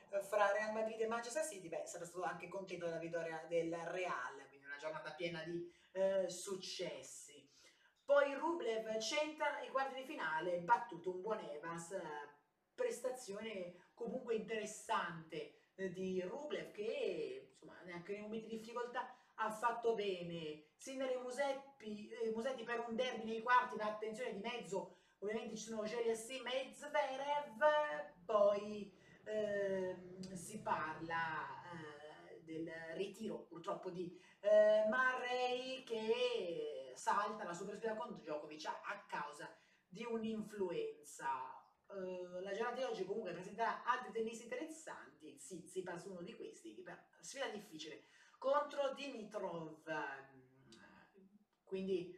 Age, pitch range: 30-49, 180-255 Hz